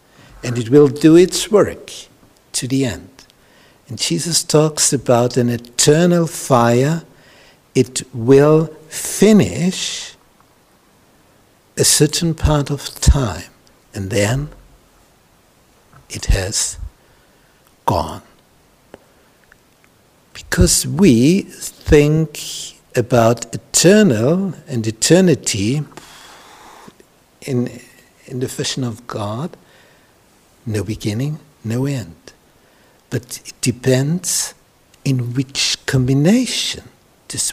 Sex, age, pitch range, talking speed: male, 60-79, 115-150 Hz, 85 wpm